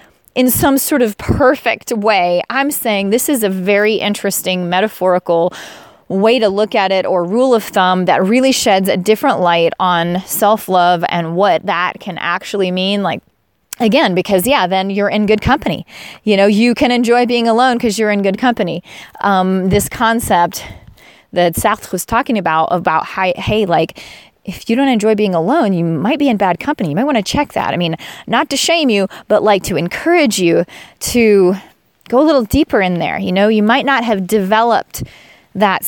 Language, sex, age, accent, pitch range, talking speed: English, female, 30-49, American, 190-245 Hz, 190 wpm